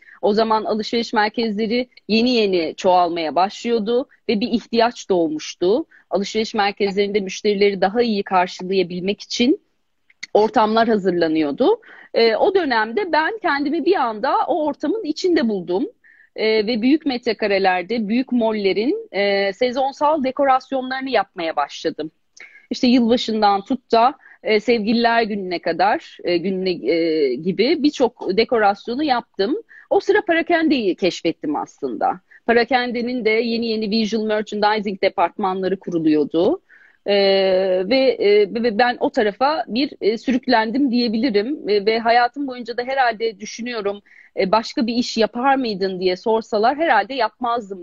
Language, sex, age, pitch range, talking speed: Turkish, female, 40-59, 195-265 Hz, 120 wpm